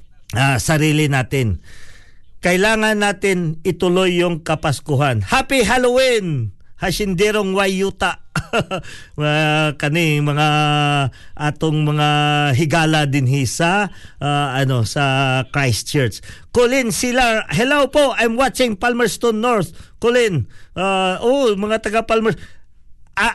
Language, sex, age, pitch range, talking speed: Filipino, male, 50-69, 140-195 Hz, 105 wpm